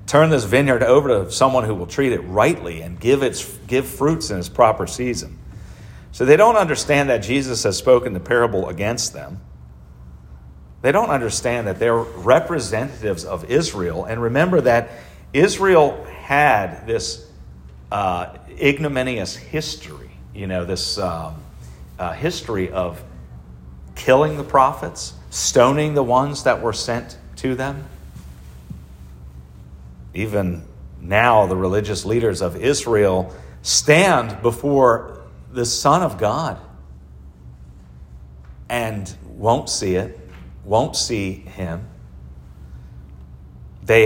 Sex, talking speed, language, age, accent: male, 120 wpm, English, 40-59, American